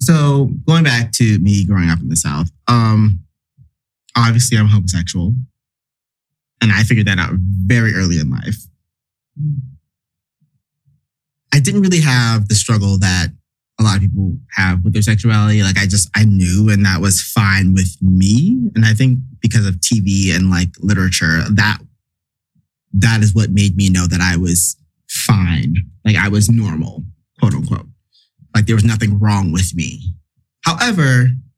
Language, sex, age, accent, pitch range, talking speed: English, male, 20-39, American, 95-120 Hz, 160 wpm